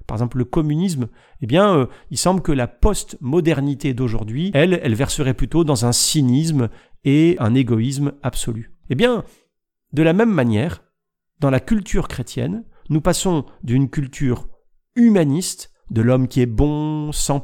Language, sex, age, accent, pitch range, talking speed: French, male, 50-69, French, 125-160 Hz, 150 wpm